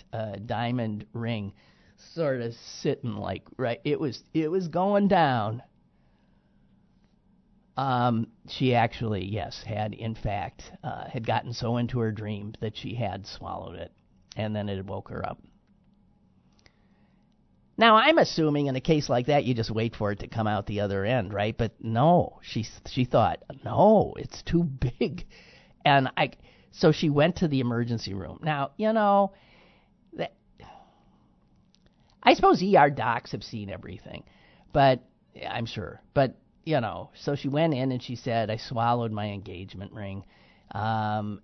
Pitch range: 105-130 Hz